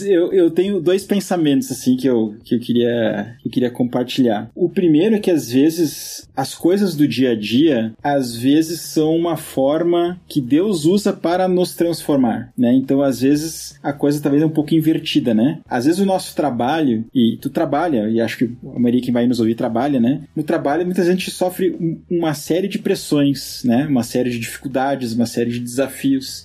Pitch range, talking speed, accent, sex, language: 130-175 Hz, 195 wpm, Brazilian, male, Portuguese